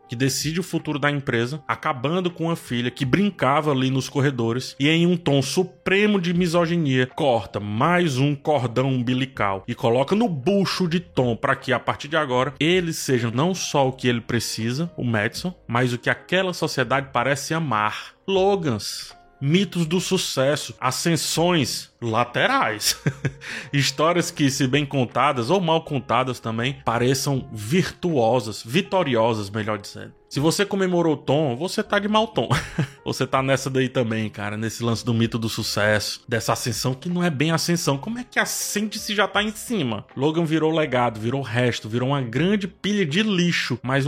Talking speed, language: 170 wpm, Portuguese